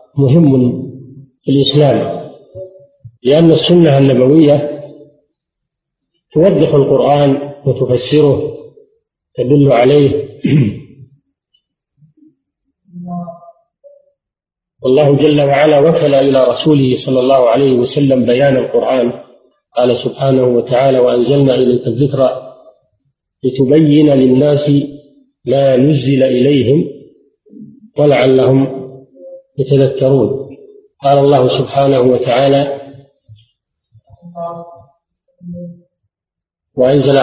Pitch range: 130-155 Hz